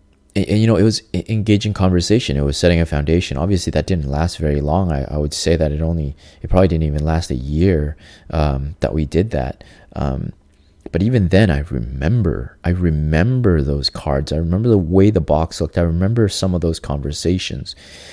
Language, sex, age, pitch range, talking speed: English, male, 20-39, 75-90 Hz, 190 wpm